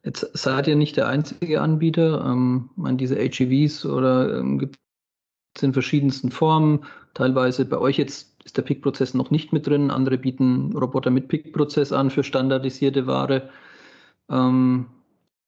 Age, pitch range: 40-59, 130-145 Hz